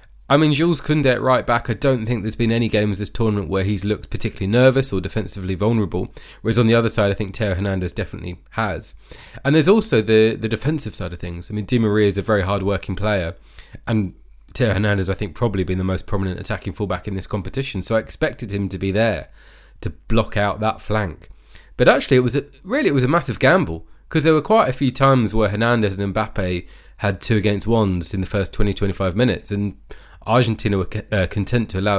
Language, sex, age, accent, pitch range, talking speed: English, male, 20-39, British, 95-115 Hz, 225 wpm